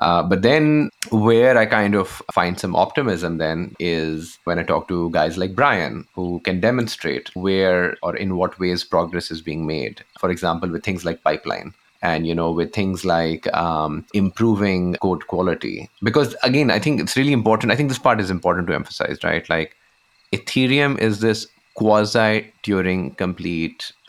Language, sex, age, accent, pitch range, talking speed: English, male, 30-49, Indian, 85-110 Hz, 175 wpm